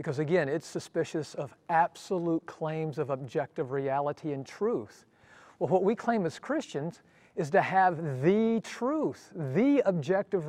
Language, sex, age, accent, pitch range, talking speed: English, male, 50-69, American, 150-185 Hz, 145 wpm